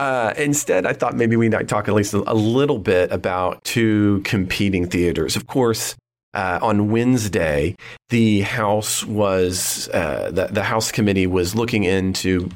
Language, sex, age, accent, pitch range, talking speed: English, male, 30-49, American, 95-120 Hz, 160 wpm